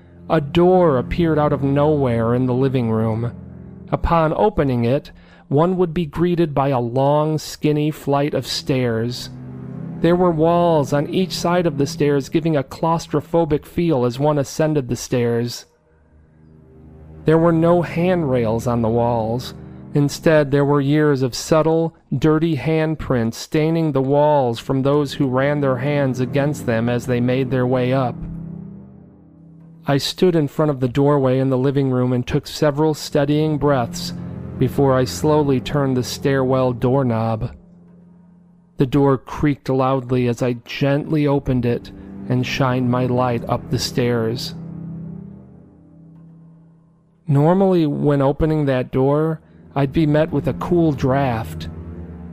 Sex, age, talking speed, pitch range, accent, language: male, 40-59, 145 wpm, 125-160 Hz, American, English